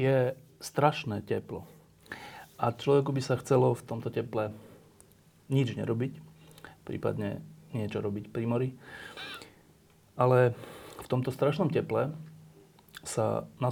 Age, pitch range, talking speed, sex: 40-59, 115-135 Hz, 110 wpm, male